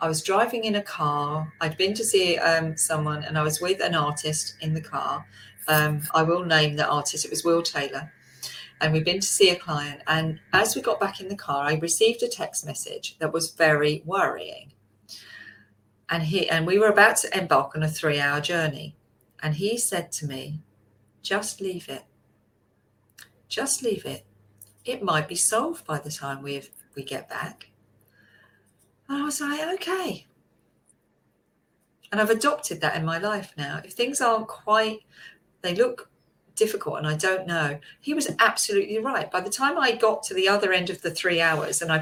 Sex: female